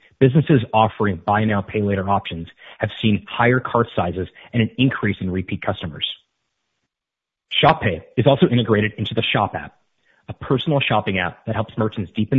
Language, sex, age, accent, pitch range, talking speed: English, male, 30-49, American, 100-120 Hz, 165 wpm